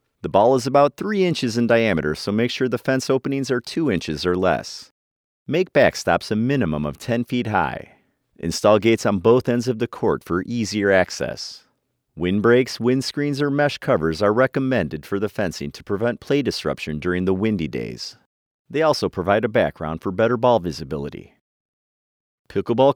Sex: male